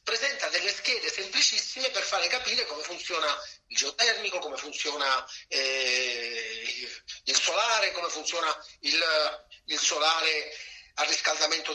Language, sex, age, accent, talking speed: Italian, male, 40-59, native, 115 wpm